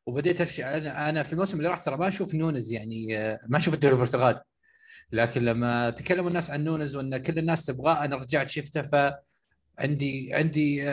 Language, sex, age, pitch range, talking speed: Arabic, male, 20-39, 125-165 Hz, 175 wpm